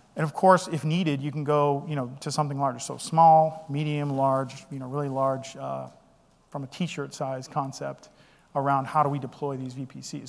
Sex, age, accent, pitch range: male, 40-59, American, 140-170 Hz